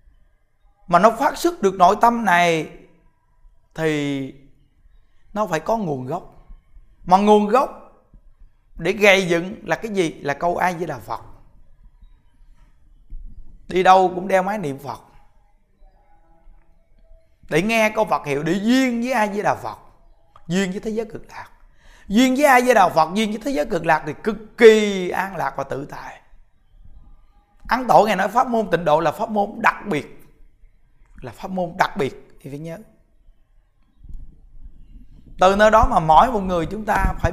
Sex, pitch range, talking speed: male, 150-220 Hz, 170 wpm